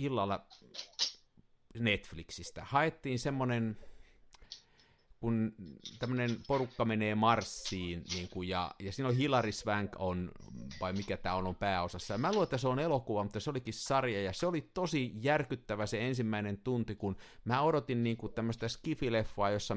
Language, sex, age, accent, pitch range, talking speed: Finnish, male, 50-69, native, 95-120 Hz, 150 wpm